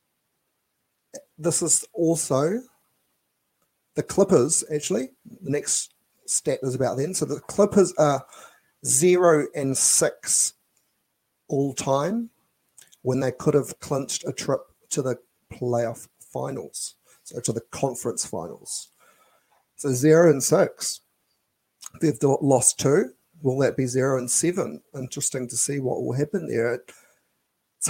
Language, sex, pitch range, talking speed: English, male, 130-170 Hz, 125 wpm